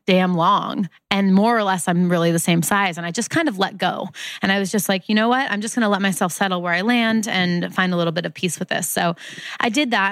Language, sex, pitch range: English, female, 175-210 Hz